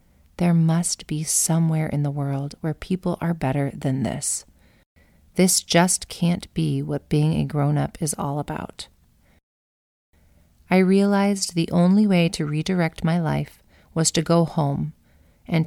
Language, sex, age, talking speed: English, female, 30-49, 145 wpm